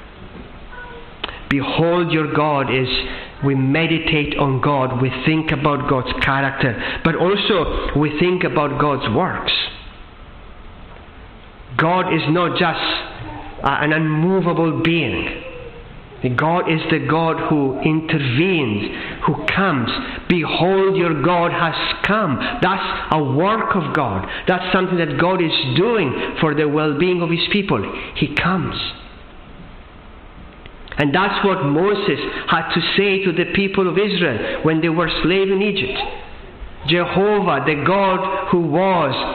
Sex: male